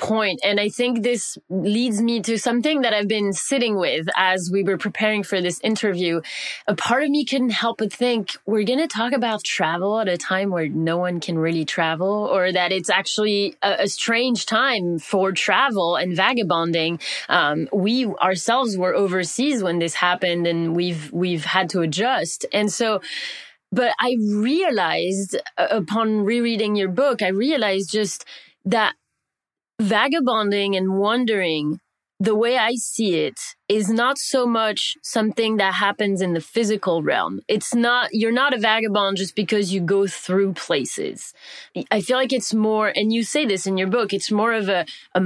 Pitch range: 190-230 Hz